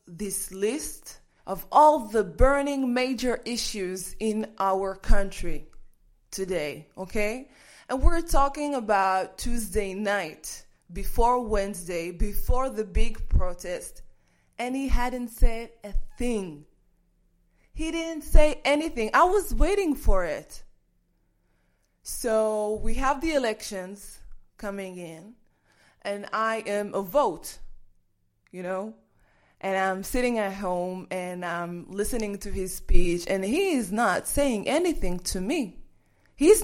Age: 20-39